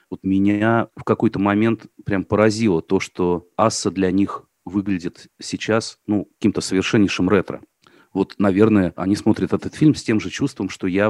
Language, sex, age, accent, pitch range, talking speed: Russian, male, 30-49, native, 95-115 Hz, 160 wpm